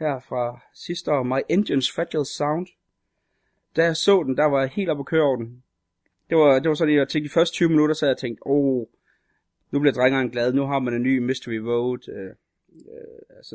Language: Danish